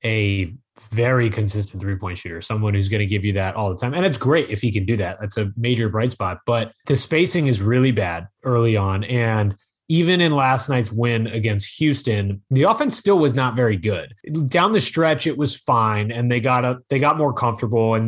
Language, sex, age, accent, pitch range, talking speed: English, male, 30-49, American, 110-135 Hz, 220 wpm